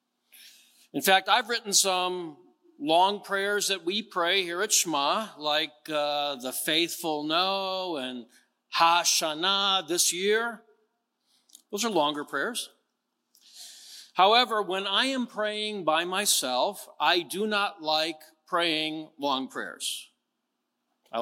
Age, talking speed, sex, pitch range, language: 50-69, 115 wpm, male, 165-235 Hz, English